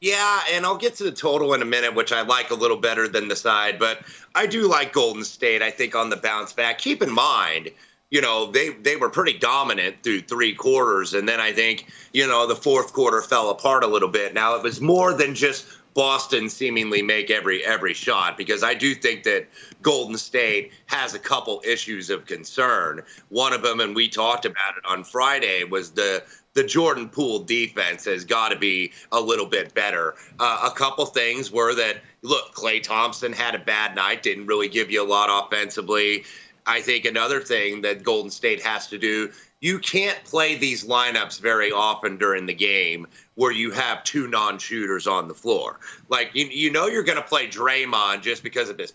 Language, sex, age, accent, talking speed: English, male, 30-49, American, 205 wpm